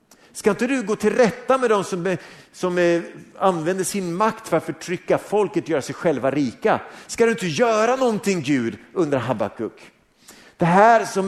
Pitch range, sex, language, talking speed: 150-215 Hz, male, Swedish, 175 wpm